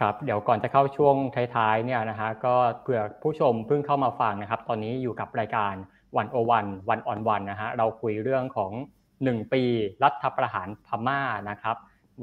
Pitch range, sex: 110-135 Hz, male